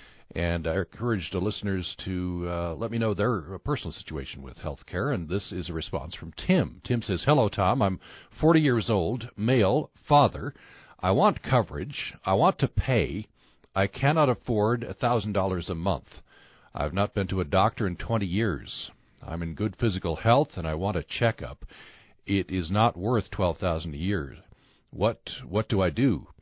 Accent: American